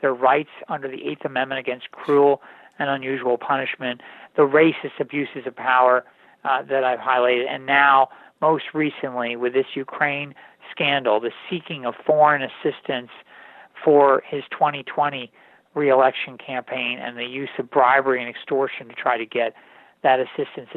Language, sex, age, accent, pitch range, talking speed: English, male, 50-69, American, 130-150 Hz, 145 wpm